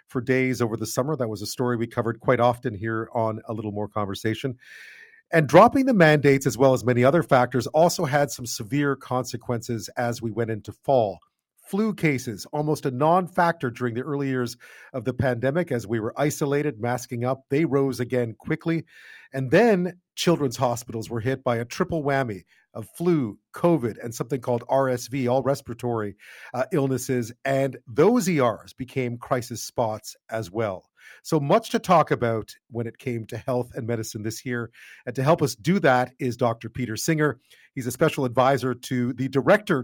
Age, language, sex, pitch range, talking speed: 40-59, English, male, 120-145 Hz, 185 wpm